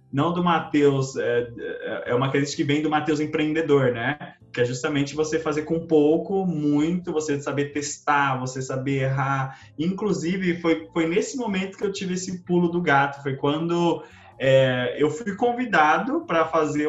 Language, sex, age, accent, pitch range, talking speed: Portuguese, male, 20-39, Brazilian, 145-175 Hz, 165 wpm